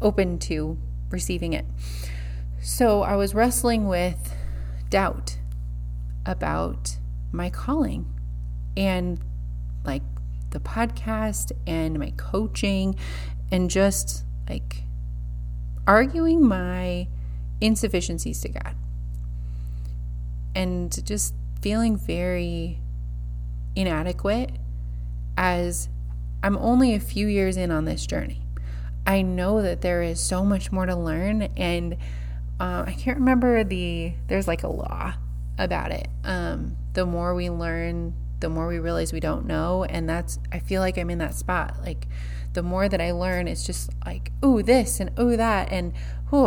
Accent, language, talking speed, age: American, English, 130 wpm, 30-49